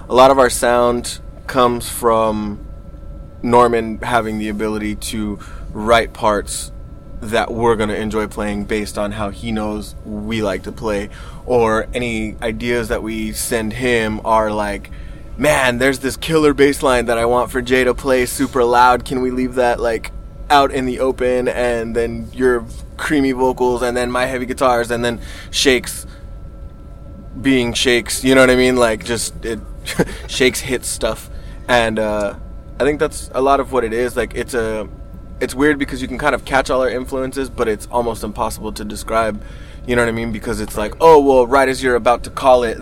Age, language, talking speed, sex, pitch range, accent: 20-39, English, 190 wpm, male, 105-125 Hz, American